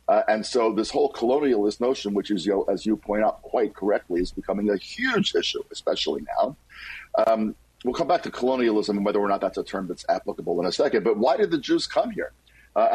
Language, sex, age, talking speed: English, male, 50-69, 225 wpm